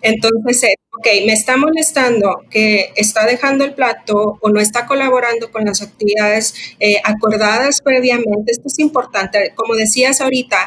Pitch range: 210-255 Hz